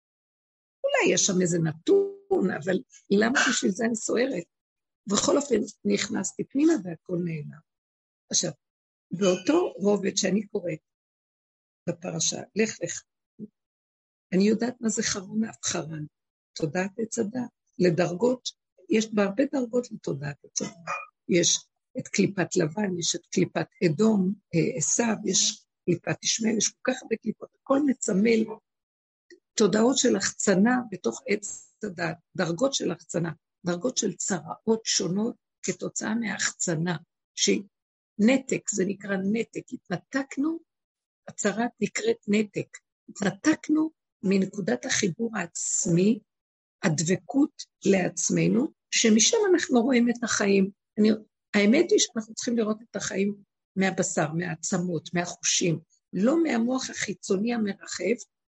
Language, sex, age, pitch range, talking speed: Hebrew, female, 60-79, 180-235 Hz, 110 wpm